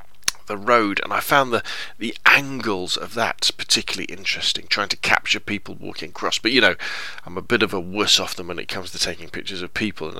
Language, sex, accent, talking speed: English, male, British, 225 wpm